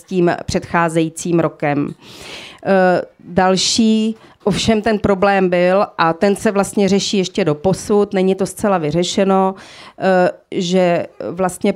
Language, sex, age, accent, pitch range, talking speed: Czech, female, 40-59, native, 180-195 Hz, 115 wpm